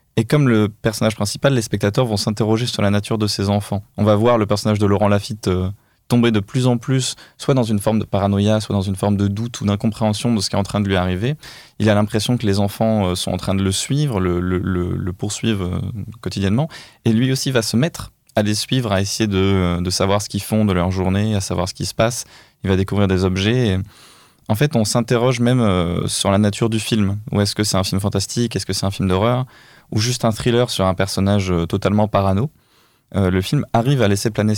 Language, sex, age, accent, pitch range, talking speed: French, male, 20-39, French, 100-120 Hz, 250 wpm